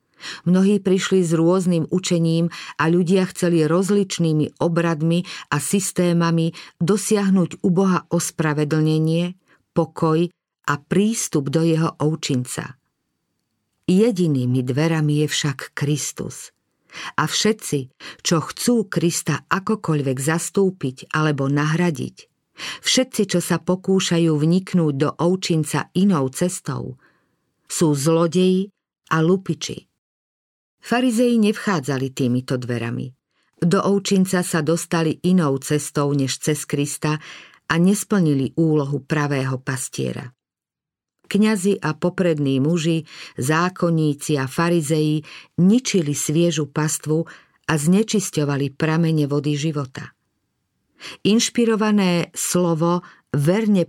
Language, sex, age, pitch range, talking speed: Slovak, female, 50-69, 150-180 Hz, 95 wpm